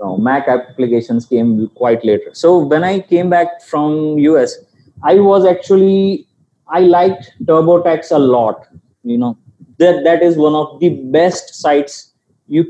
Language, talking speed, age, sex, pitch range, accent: English, 145 wpm, 20-39, male, 145-180 Hz, Indian